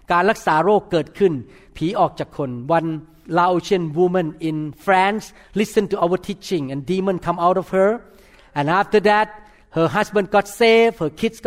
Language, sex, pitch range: Thai, male, 165-220 Hz